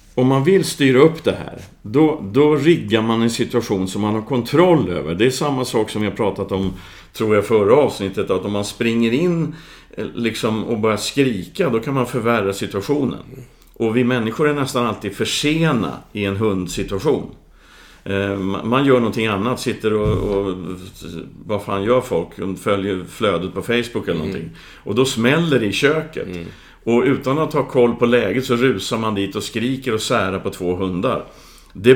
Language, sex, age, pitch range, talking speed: Swedish, male, 50-69, 100-130 Hz, 185 wpm